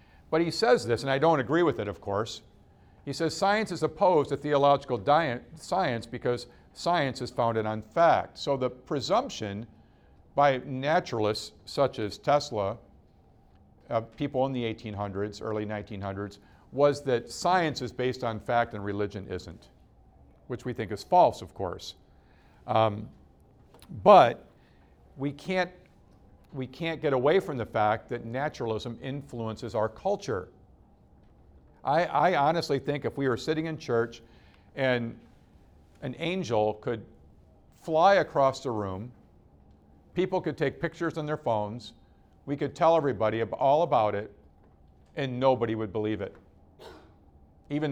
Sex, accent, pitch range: male, American, 105-145 Hz